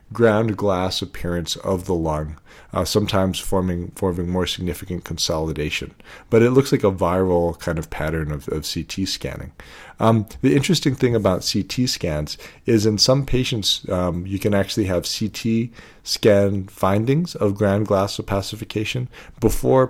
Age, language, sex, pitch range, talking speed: 40-59, English, male, 85-110 Hz, 150 wpm